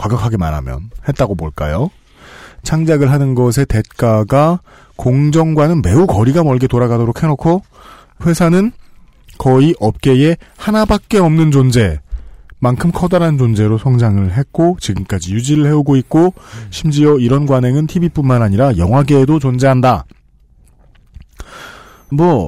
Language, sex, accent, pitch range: Korean, male, native, 110-170 Hz